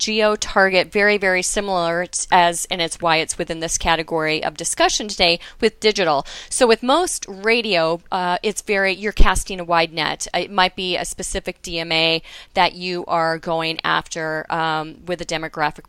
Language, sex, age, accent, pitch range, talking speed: English, female, 30-49, American, 170-205 Hz, 170 wpm